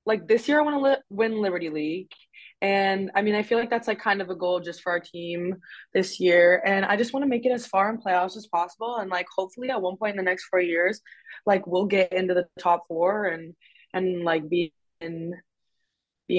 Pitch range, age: 170-200 Hz, 20-39